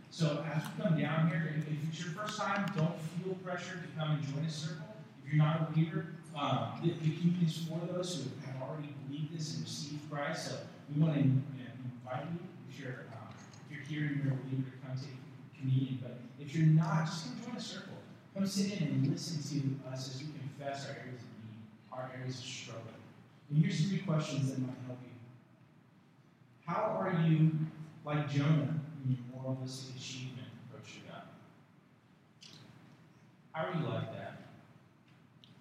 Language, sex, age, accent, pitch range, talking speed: English, male, 30-49, American, 130-160 Hz, 180 wpm